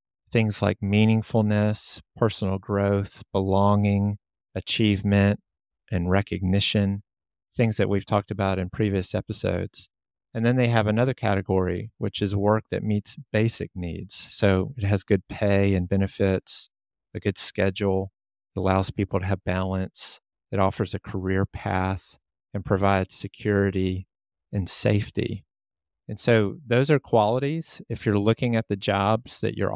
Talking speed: 135 wpm